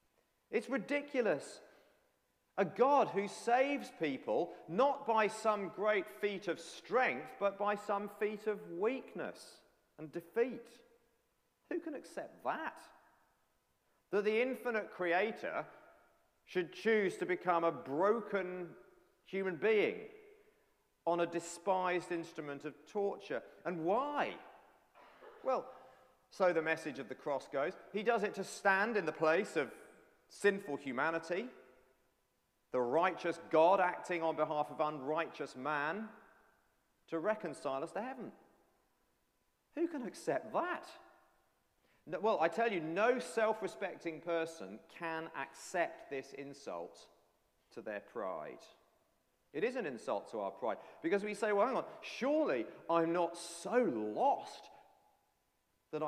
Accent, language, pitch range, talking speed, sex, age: British, English, 165-230 Hz, 125 wpm, male, 40-59